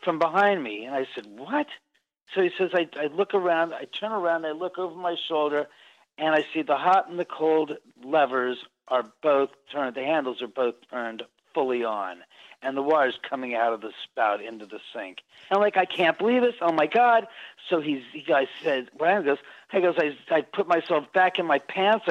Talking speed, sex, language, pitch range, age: 220 wpm, male, English, 155-225 Hz, 50-69